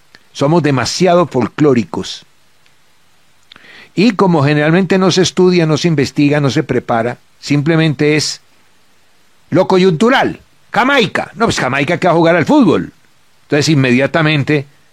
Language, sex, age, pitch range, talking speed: Spanish, male, 60-79, 145-195 Hz, 125 wpm